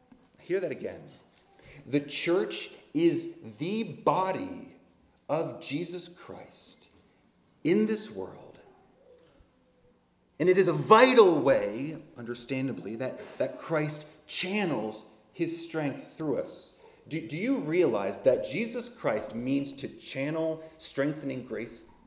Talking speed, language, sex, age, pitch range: 110 wpm, English, male, 30-49, 140-215 Hz